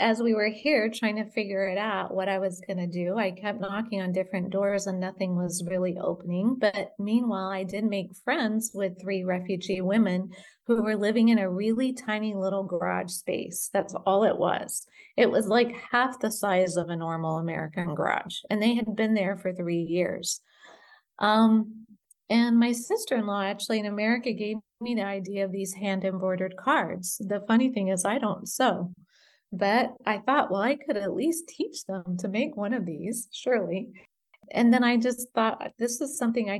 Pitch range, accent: 190-235 Hz, American